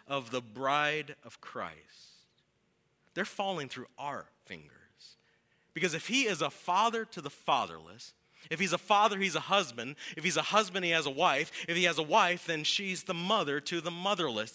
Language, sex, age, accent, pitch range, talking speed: English, male, 30-49, American, 150-205 Hz, 190 wpm